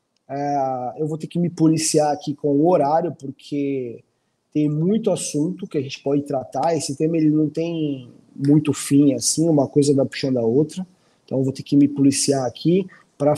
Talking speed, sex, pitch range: 195 wpm, male, 145-180 Hz